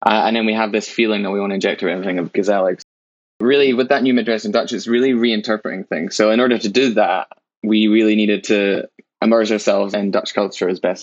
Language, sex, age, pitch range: English, male, 20-39, 100-110 Hz